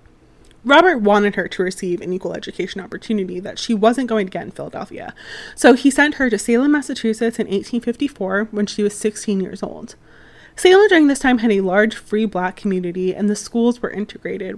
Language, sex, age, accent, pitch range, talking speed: English, female, 20-39, American, 195-245 Hz, 195 wpm